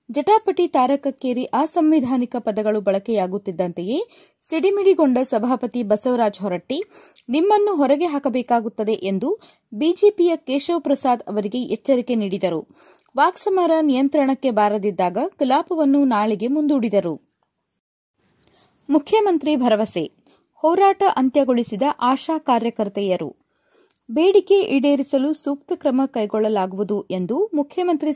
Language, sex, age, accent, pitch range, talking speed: Kannada, female, 30-49, native, 215-315 Hz, 80 wpm